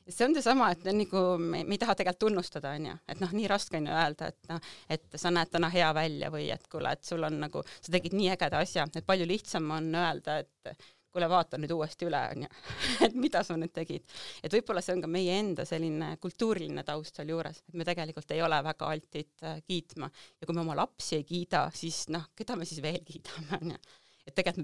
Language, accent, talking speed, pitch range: English, Finnish, 225 wpm, 155-180 Hz